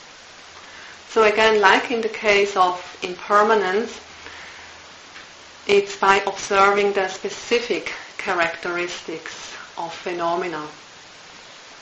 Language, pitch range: English, 185-215 Hz